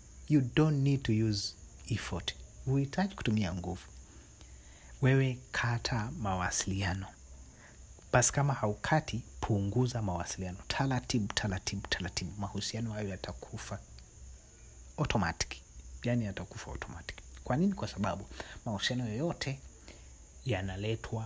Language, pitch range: Swahili, 85-120 Hz